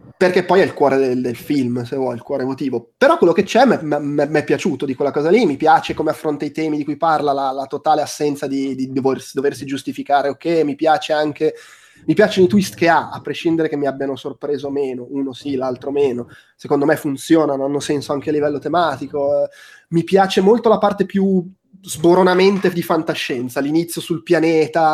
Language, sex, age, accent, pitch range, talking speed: Italian, male, 20-39, native, 135-165 Hz, 205 wpm